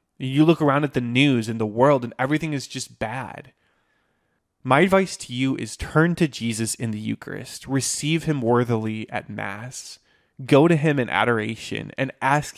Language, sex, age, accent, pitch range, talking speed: English, male, 20-39, American, 115-145 Hz, 175 wpm